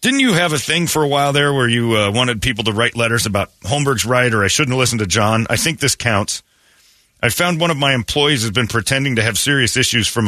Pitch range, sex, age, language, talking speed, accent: 110-145 Hz, male, 40-59, English, 255 wpm, American